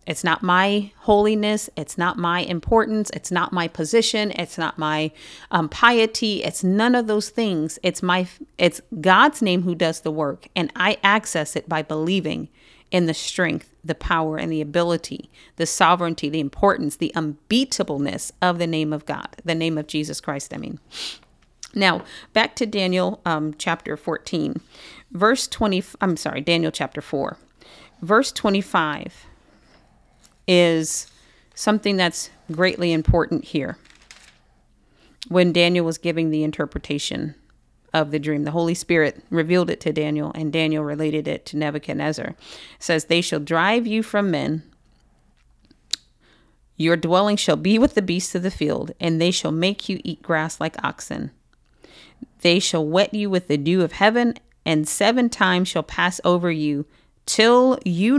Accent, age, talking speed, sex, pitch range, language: American, 40-59, 155 wpm, female, 155-200 Hz, English